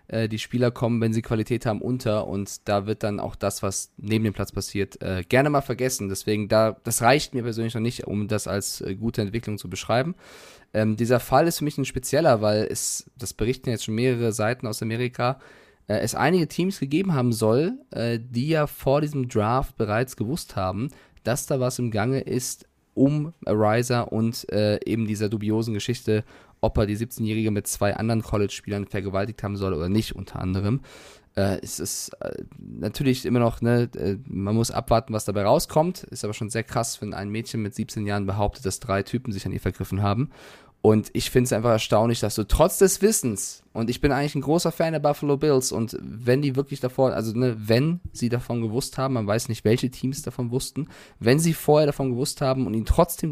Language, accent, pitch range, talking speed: German, German, 105-130 Hz, 200 wpm